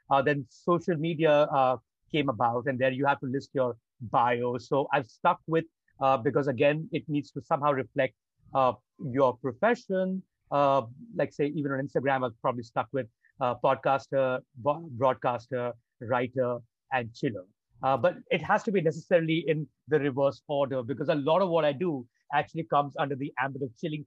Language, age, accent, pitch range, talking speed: English, 50-69, Indian, 135-160 Hz, 175 wpm